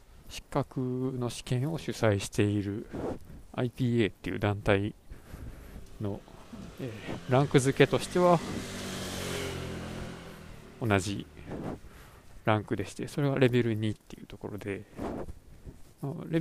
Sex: male